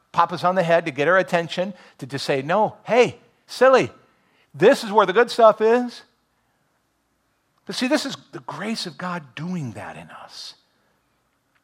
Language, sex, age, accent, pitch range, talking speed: English, male, 50-69, American, 140-215 Hz, 175 wpm